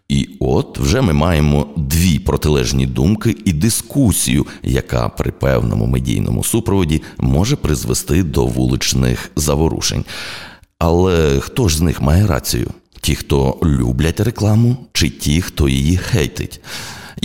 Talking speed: 125 wpm